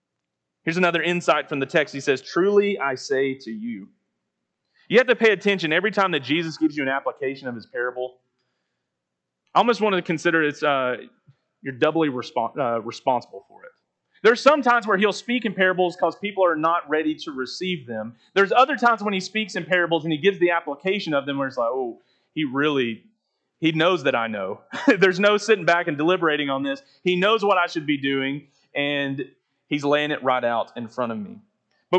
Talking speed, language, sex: 210 wpm, English, male